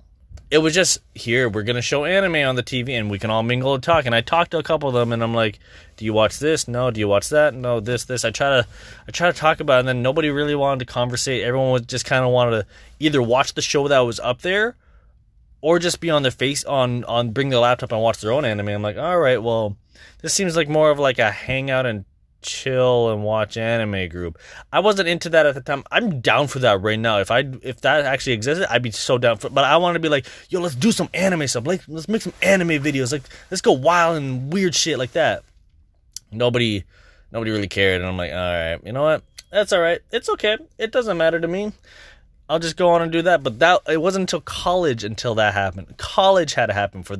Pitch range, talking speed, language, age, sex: 110-160 Hz, 255 wpm, English, 20-39, male